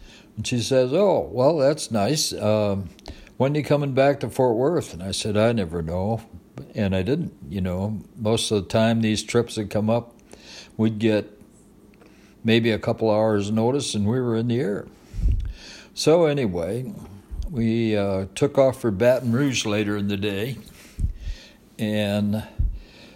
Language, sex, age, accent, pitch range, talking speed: English, male, 60-79, American, 95-120 Hz, 165 wpm